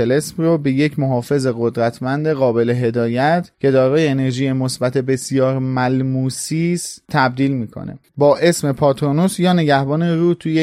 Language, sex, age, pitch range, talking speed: Persian, male, 30-49, 130-160 Hz, 120 wpm